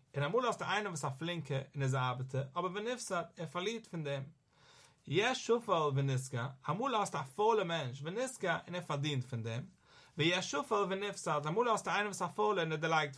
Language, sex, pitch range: English, male, 140-195 Hz